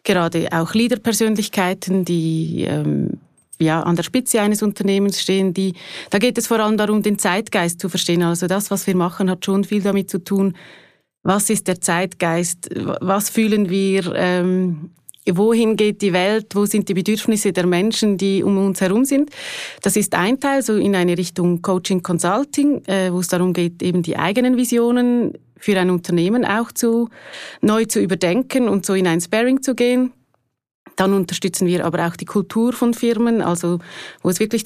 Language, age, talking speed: German, 30-49, 180 wpm